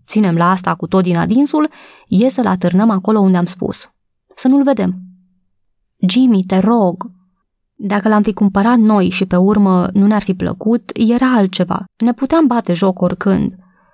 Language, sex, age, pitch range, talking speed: Romanian, female, 20-39, 180-220 Hz, 165 wpm